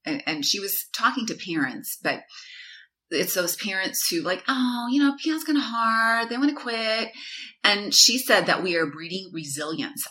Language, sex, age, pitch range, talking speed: English, female, 30-49, 180-250 Hz, 185 wpm